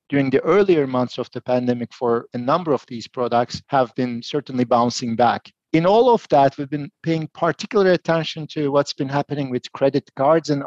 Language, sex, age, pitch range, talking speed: English, male, 40-59, 125-165 Hz, 195 wpm